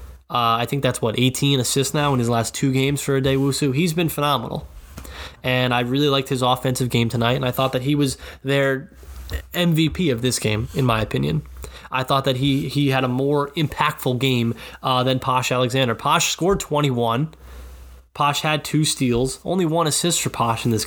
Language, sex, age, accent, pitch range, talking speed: English, male, 20-39, American, 115-145 Hz, 195 wpm